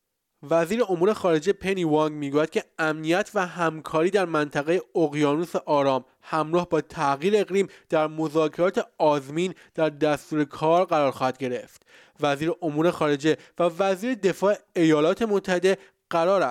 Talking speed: 125 wpm